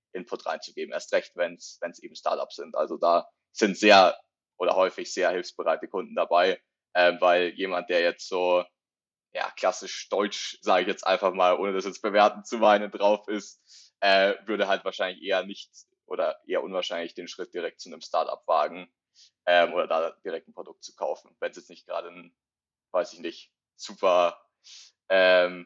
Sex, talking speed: male, 180 wpm